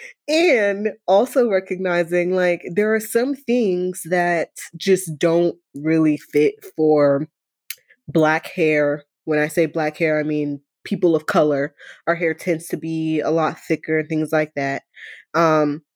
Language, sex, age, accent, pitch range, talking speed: English, female, 20-39, American, 150-185 Hz, 145 wpm